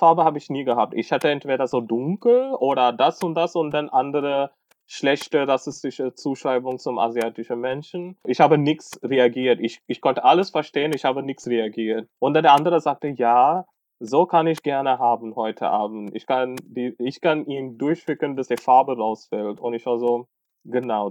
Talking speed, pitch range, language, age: 180 wpm, 120-155 Hz, German, 20-39